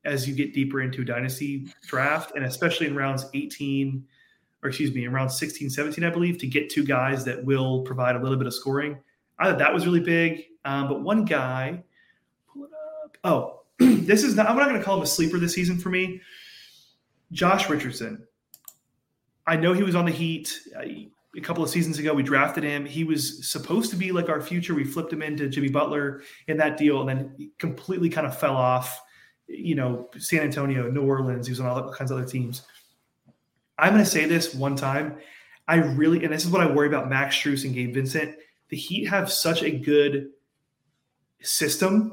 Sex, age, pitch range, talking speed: male, 30-49, 135-170 Hz, 205 wpm